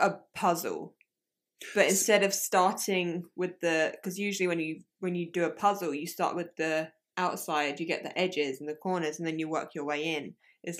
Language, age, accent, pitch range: English, 20-39, British, 160-185 Hz